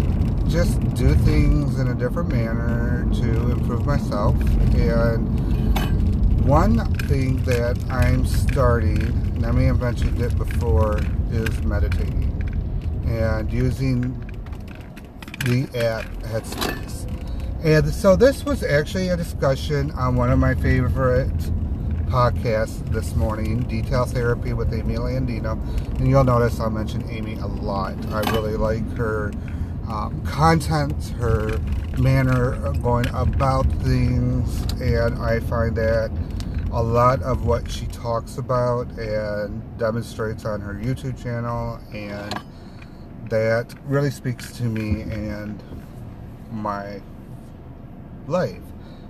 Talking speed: 115 wpm